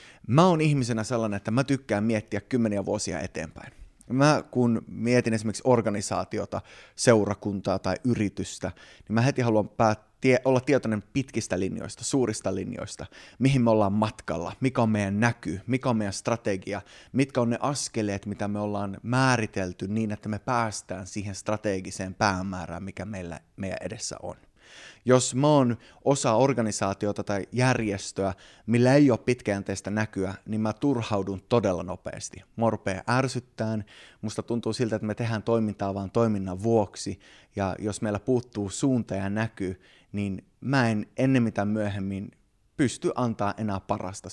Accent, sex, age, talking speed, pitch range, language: native, male, 20-39, 140 wpm, 100-120 Hz, Finnish